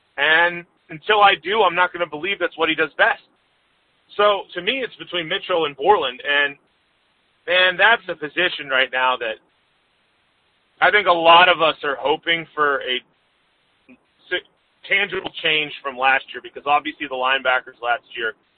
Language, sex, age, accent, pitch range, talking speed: English, male, 30-49, American, 150-195 Hz, 165 wpm